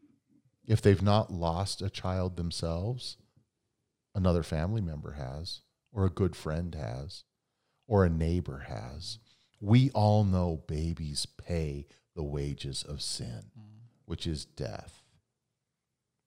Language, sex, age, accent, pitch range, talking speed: English, male, 50-69, American, 95-125 Hz, 120 wpm